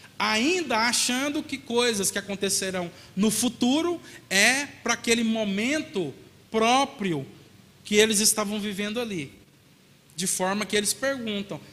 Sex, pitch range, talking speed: male, 180-240 Hz, 120 wpm